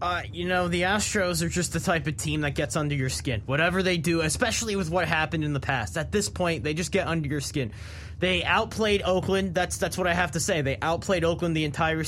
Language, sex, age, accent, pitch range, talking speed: English, male, 20-39, American, 150-185 Hz, 250 wpm